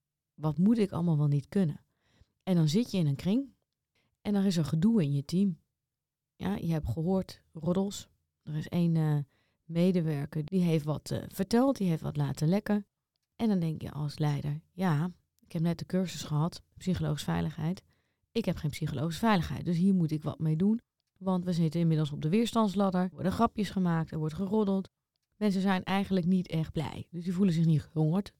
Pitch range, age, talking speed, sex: 150-190 Hz, 30-49, 200 wpm, female